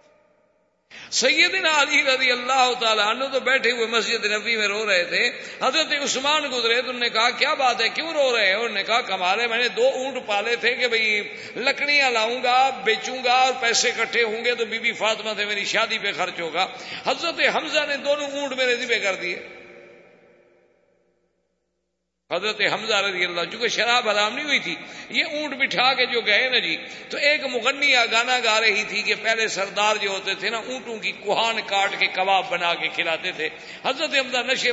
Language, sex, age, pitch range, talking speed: Urdu, male, 50-69, 190-255 Hz, 200 wpm